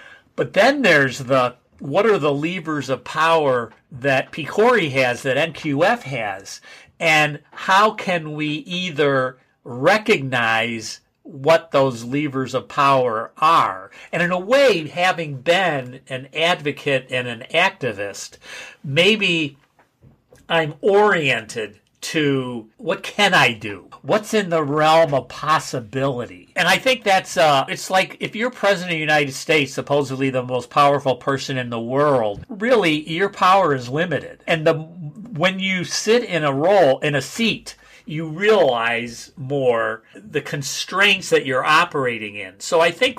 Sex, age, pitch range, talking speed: male, 50-69, 130-180 Hz, 140 wpm